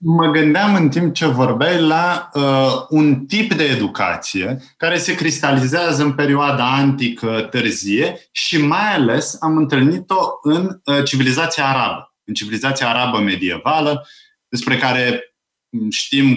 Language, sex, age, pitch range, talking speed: Romanian, male, 30-49, 120-165 Hz, 125 wpm